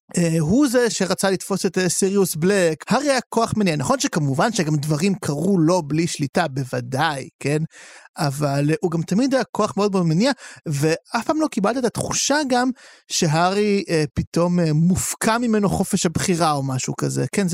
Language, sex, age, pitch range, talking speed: Hebrew, male, 30-49, 155-215 Hz, 175 wpm